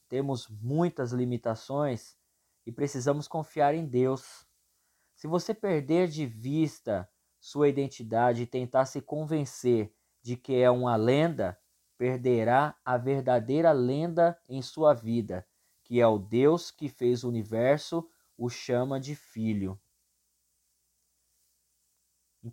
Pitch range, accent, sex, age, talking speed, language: 110-145 Hz, Brazilian, male, 20-39, 115 wpm, Portuguese